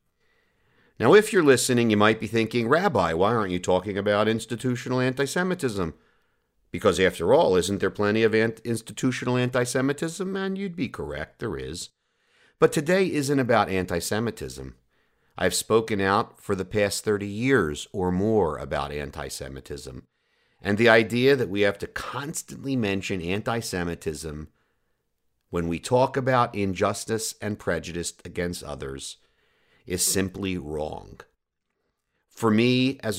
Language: English